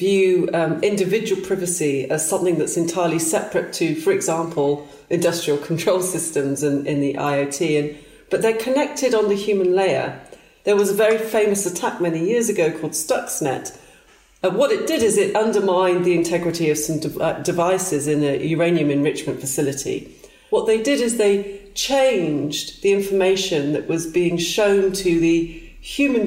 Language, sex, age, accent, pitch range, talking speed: English, female, 40-59, British, 155-200 Hz, 160 wpm